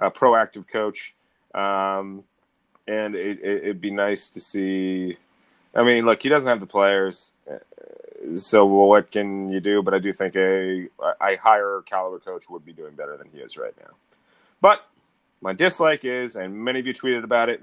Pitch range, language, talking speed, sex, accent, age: 95-130 Hz, English, 170 wpm, male, American, 30-49